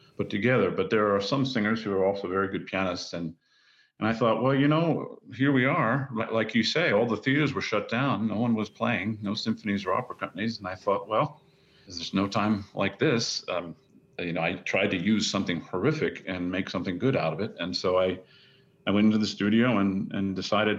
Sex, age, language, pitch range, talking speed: male, 40-59, English, 95-130 Hz, 220 wpm